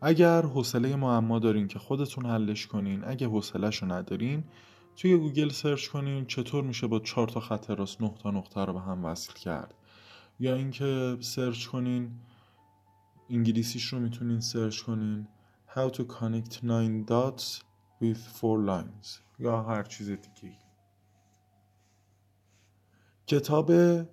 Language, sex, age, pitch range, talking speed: Persian, male, 20-39, 105-130 Hz, 130 wpm